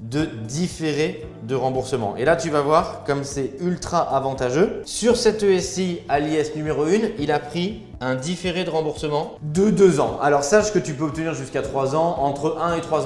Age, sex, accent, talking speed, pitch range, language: 20-39, male, French, 195 wpm, 135-180 Hz, French